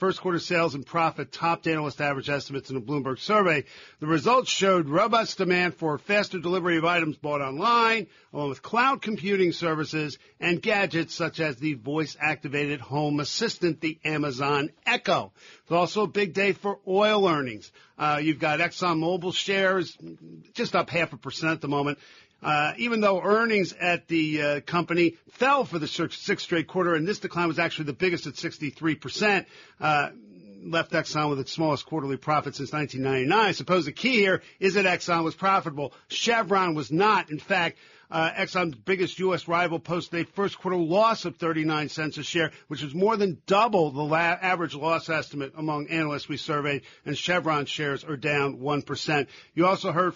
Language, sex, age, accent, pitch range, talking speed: English, male, 50-69, American, 150-185 Hz, 175 wpm